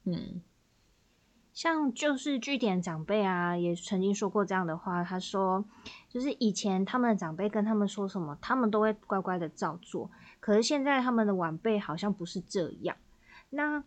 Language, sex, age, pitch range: Chinese, female, 20-39, 175-215 Hz